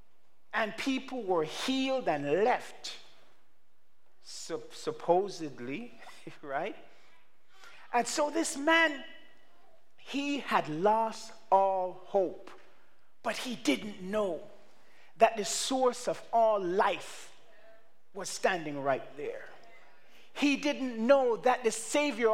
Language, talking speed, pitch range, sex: English, 100 wpm, 210-285 Hz, male